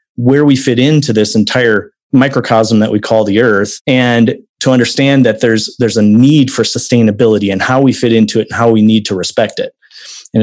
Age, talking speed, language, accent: 30-49, 205 wpm, English, American